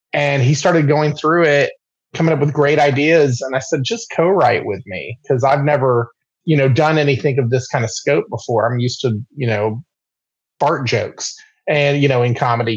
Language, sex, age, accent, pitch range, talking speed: English, male, 30-49, American, 120-150 Hz, 200 wpm